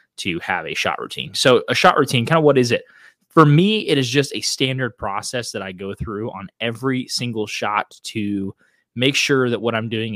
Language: English